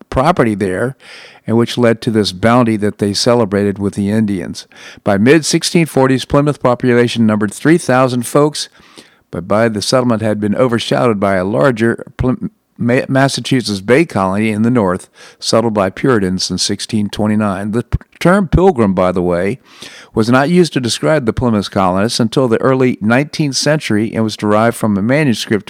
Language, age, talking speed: English, 50-69, 155 wpm